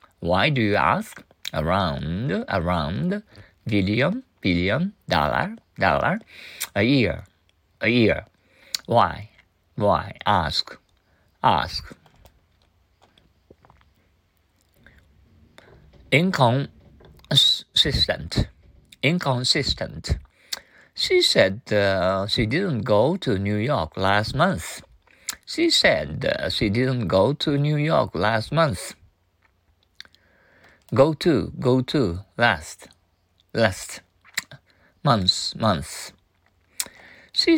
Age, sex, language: 50-69, male, Japanese